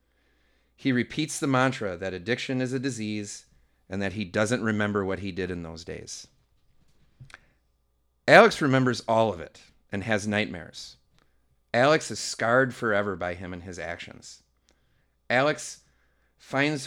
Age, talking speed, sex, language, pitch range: 30-49, 140 wpm, male, English, 85-115 Hz